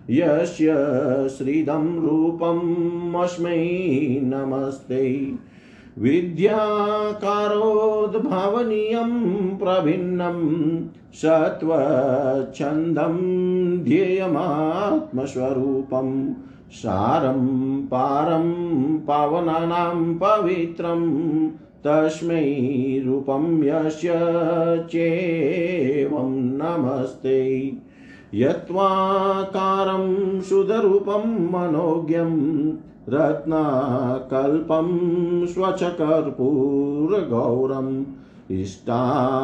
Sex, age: male, 50-69